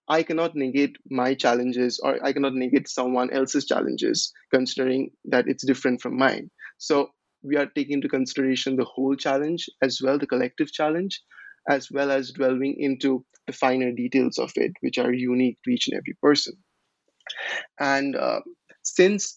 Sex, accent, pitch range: male, Indian, 130-145 Hz